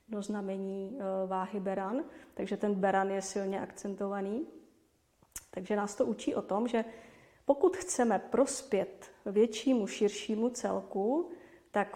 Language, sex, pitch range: Czech, female, 195-220 Hz